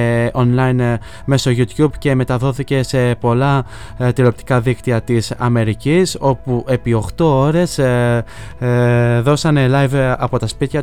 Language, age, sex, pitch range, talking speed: Greek, 20-39, male, 120-140 Hz, 110 wpm